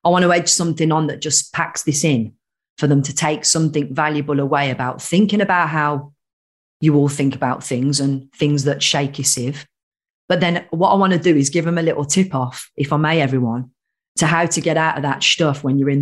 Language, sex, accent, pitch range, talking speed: English, female, British, 140-175 Hz, 230 wpm